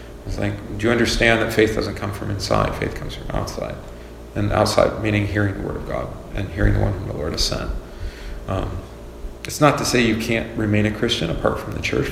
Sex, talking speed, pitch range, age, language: male, 220 wpm, 95-110 Hz, 40-59, English